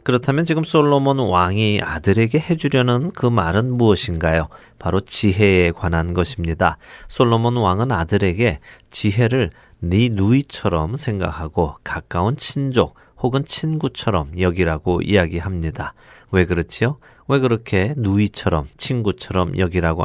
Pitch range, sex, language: 90-125 Hz, male, Korean